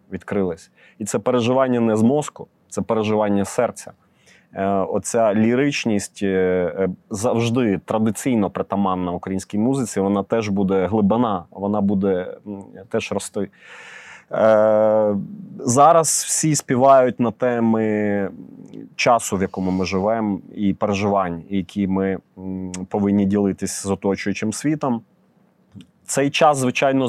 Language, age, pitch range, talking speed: Ukrainian, 30-49, 100-130 Hz, 115 wpm